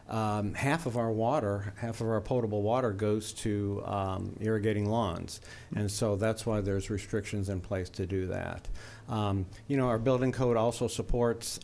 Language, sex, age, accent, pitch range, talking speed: English, male, 50-69, American, 100-115 Hz, 175 wpm